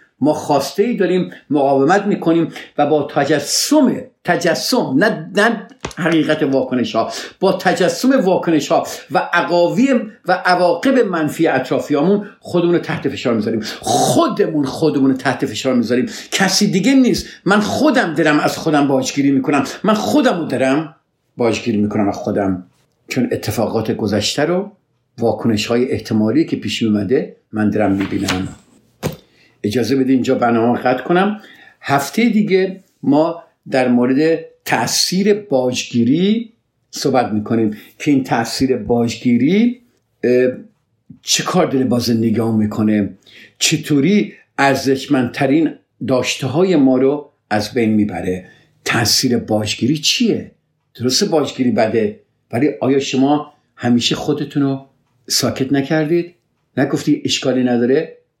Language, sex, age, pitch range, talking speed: Persian, male, 50-69, 120-175 Hz, 115 wpm